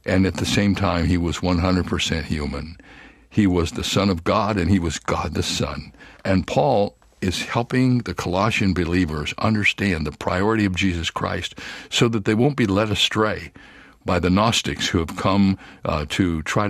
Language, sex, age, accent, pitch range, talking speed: English, male, 60-79, American, 85-100 Hz, 180 wpm